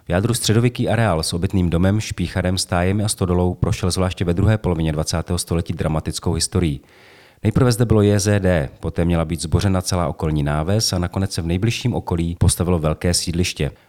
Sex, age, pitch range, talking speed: male, 40-59, 85-105 Hz, 175 wpm